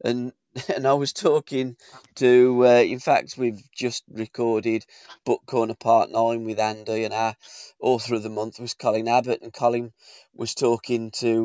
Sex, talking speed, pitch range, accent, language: male, 170 wpm, 120-160 Hz, British, English